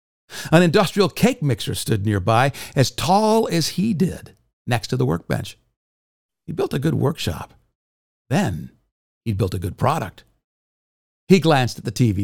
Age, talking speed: 50-69, 150 wpm